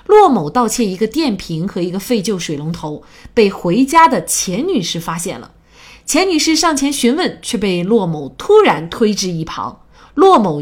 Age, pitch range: 30-49, 180-265 Hz